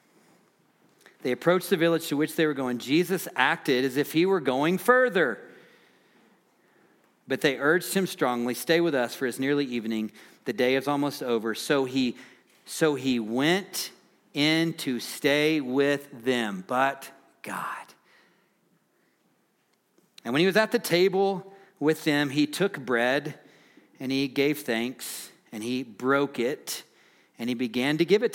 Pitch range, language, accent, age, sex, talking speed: 130-180 Hz, English, American, 40-59, male, 150 wpm